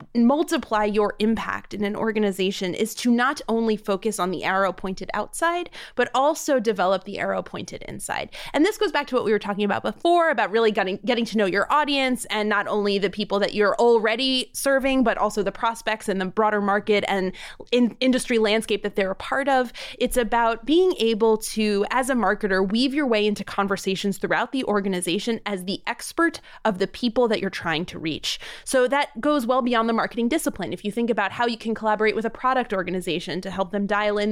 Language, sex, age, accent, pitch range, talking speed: English, female, 20-39, American, 200-245 Hz, 210 wpm